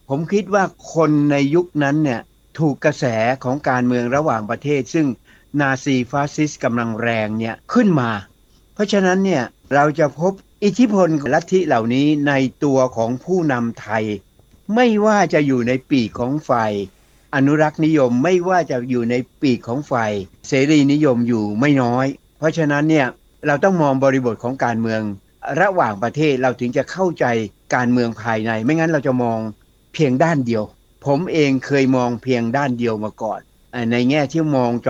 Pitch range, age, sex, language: 115-150 Hz, 60-79, male, Thai